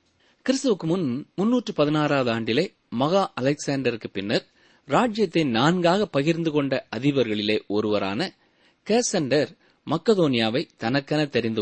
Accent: native